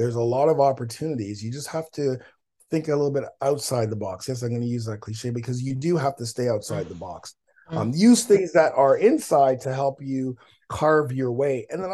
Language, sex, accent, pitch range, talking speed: English, male, American, 115-145 Hz, 230 wpm